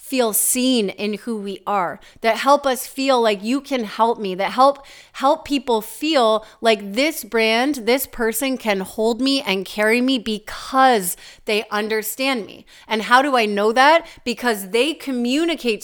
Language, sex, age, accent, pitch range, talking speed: English, female, 30-49, American, 210-265 Hz, 165 wpm